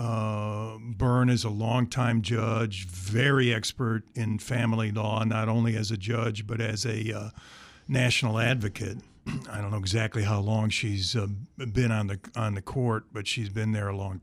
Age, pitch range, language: 50-69, 110-125 Hz, English